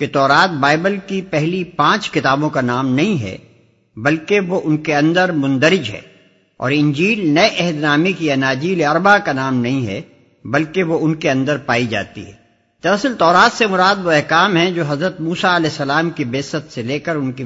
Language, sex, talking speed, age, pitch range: Urdu, male, 195 wpm, 50-69, 130-180 Hz